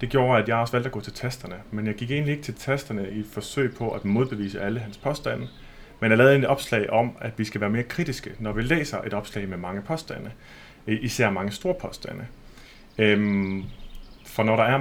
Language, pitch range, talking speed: Danish, 105-130 Hz, 220 wpm